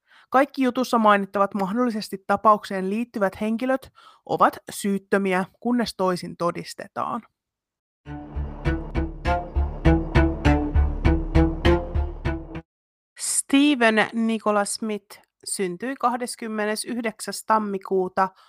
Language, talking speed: Finnish, 60 wpm